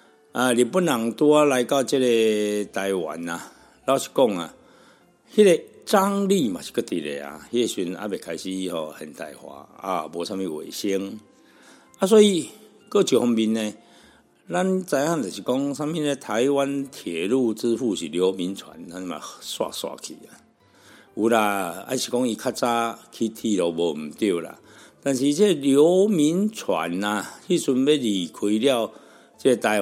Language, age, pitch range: Chinese, 60-79, 105-140 Hz